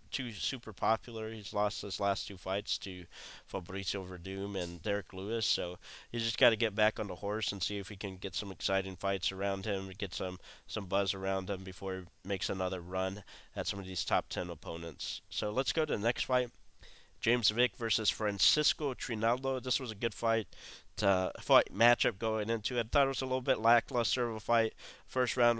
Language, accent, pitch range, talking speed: English, American, 100-115 Hz, 210 wpm